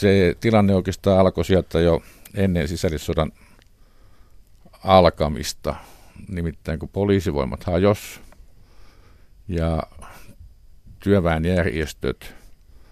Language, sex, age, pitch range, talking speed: Finnish, male, 50-69, 85-100 Hz, 70 wpm